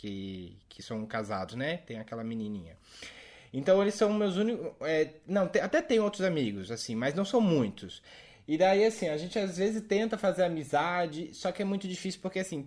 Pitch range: 140-195 Hz